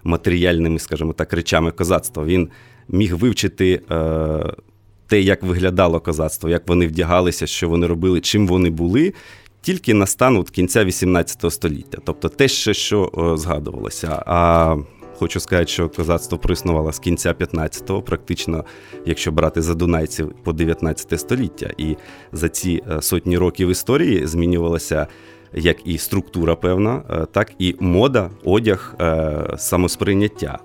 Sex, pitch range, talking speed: male, 85-105 Hz, 125 wpm